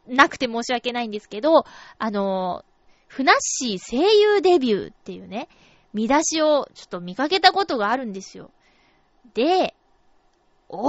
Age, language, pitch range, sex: 20-39, Japanese, 225-360 Hz, female